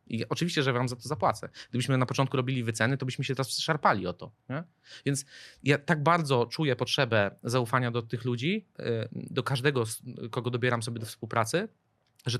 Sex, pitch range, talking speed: male, 115-135 Hz, 180 wpm